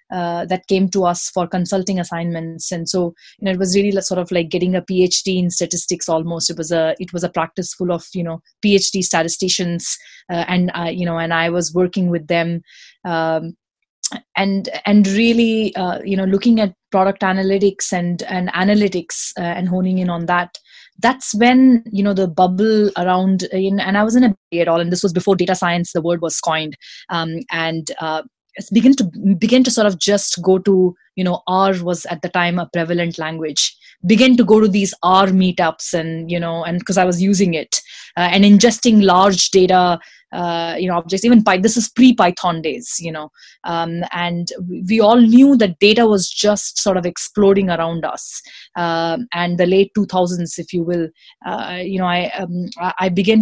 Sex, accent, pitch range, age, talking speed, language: female, Indian, 175-200 Hz, 20-39, 195 wpm, English